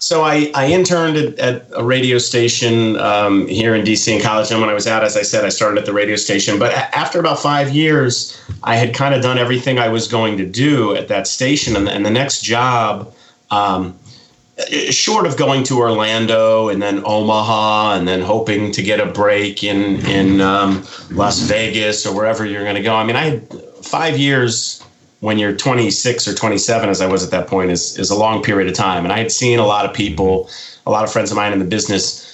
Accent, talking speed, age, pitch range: American, 225 wpm, 30-49, 95-120 Hz